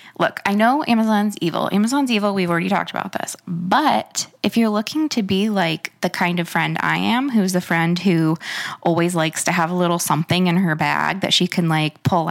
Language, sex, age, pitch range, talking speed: English, female, 20-39, 170-235 Hz, 215 wpm